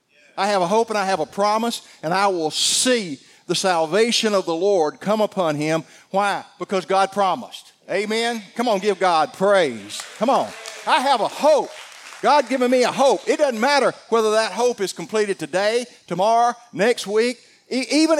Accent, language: American, English